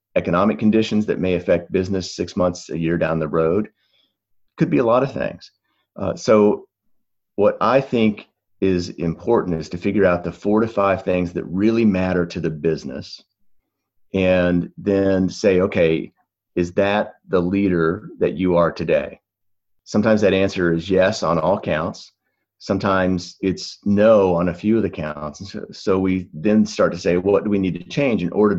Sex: male